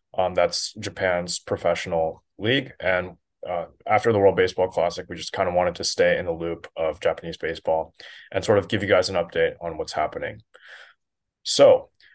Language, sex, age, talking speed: English, male, 20-39, 185 wpm